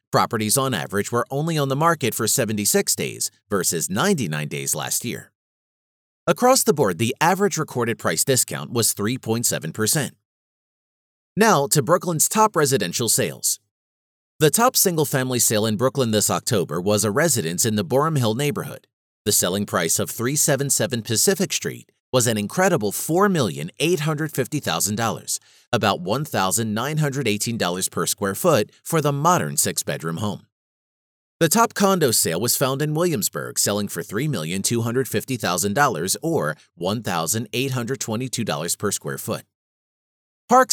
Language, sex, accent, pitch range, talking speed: English, male, American, 105-155 Hz, 125 wpm